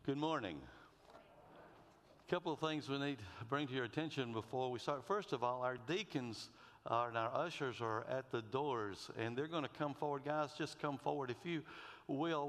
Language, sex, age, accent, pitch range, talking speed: English, male, 60-79, American, 115-145 Hz, 200 wpm